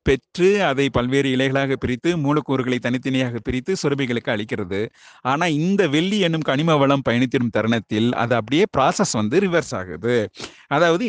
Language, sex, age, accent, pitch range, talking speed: Tamil, male, 30-49, native, 125-160 Hz, 130 wpm